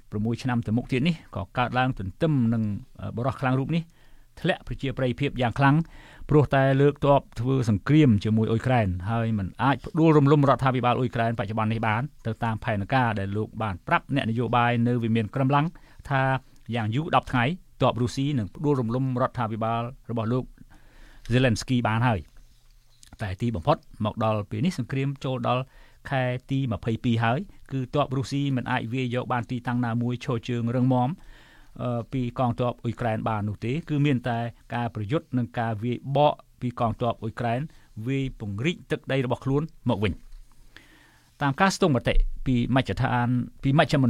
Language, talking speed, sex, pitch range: English, 40 wpm, male, 115-135 Hz